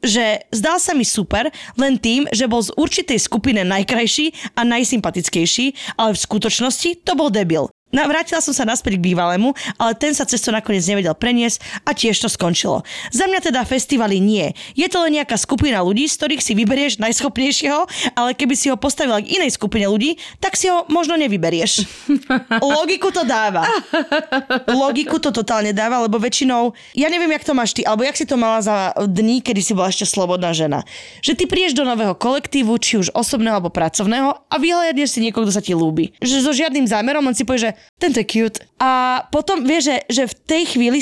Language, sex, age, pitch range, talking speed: Slovak, female, 20-39, 215-285 Hz, 195 wpm